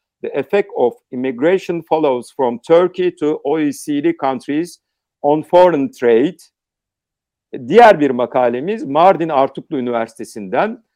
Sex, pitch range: male, 125-185 Hz